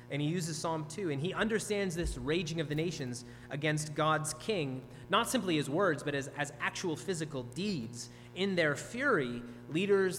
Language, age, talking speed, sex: English, 30-49, 175 wpm, male